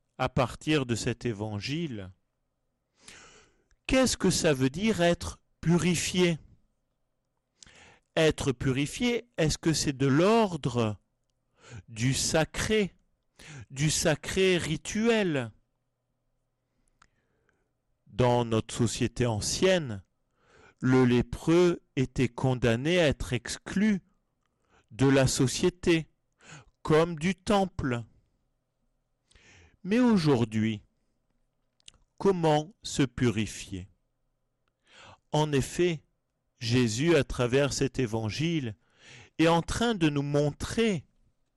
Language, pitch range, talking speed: French, 125-170 Hz, 85 wpm